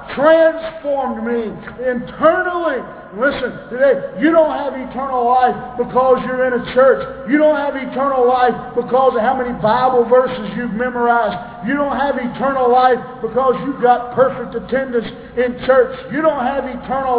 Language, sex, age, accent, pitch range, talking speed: English, male, 50-69, American, 235-265 Hz, 155 wpm